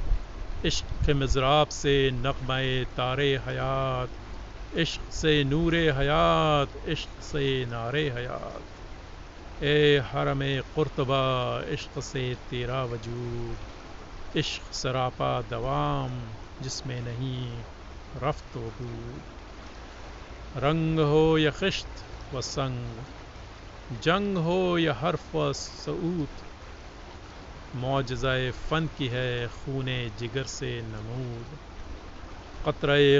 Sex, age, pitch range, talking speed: male, 50-69, 105-140 Hz, 85 wpm